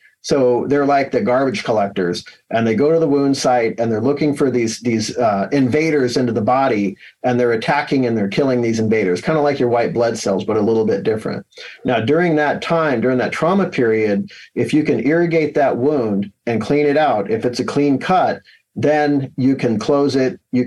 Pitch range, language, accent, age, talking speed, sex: 120-145 Hz, English, American, 50-69, 210 wpm, male